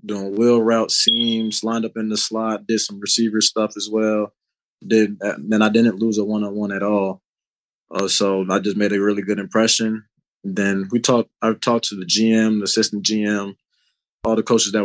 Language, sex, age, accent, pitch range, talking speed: English, male, 20-39, American, 100-115 Hz, 200 wpm